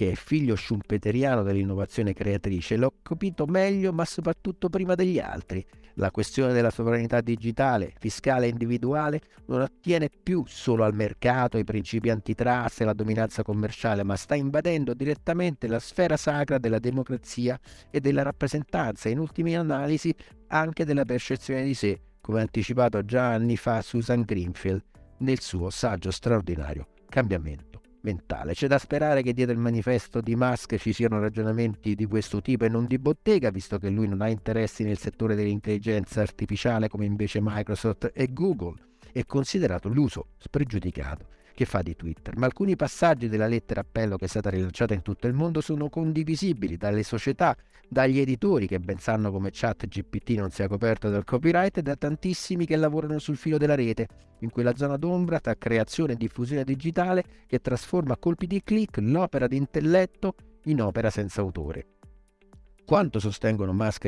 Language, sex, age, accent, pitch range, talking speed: Italian, male, 50-69, native, 105-145 Hz, 160 wpm